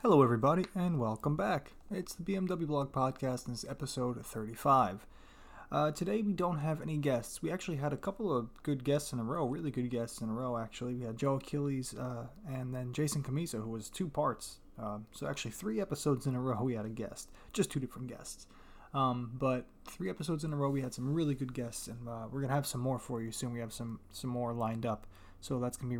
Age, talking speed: 20-39, 240 wpm